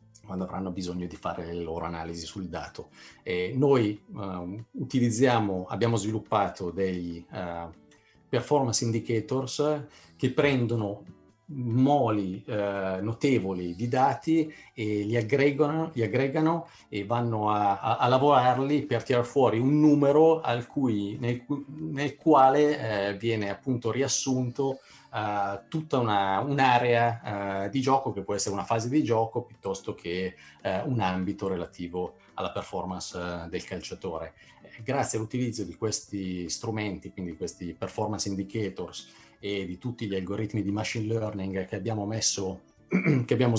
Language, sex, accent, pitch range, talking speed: Italian, male, native, 95-130 Hz, 135 wpm